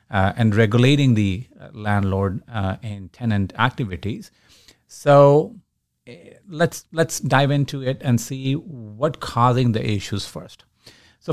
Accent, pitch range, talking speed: Indian, 110-140 Hz, 130 wpm